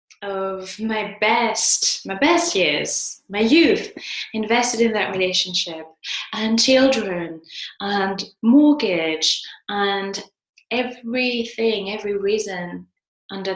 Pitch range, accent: 185-225 Hz, British